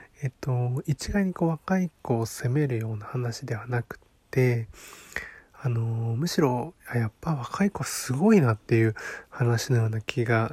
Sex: male